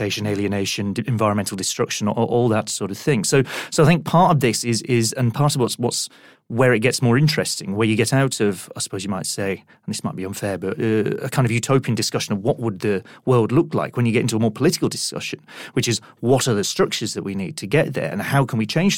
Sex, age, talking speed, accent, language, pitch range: male, 30-49, 260 wpm, British, English, 110-140 Hz